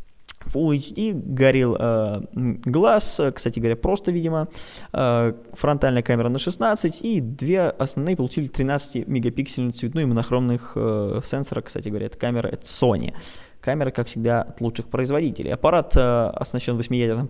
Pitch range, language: 120-160 Hz, Russian